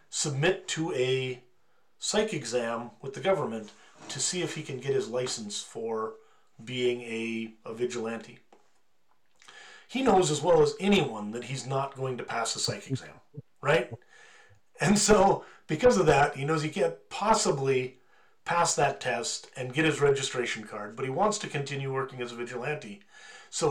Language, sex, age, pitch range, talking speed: English, male, 40-59, 125-160 Hz, 165 wpm